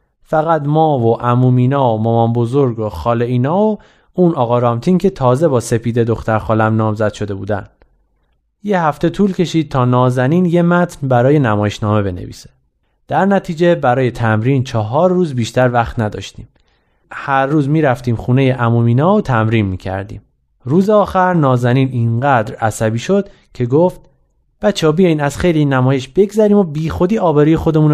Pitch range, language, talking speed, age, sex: 115-175 Hz, Persian, 155 wpm, 30-49, male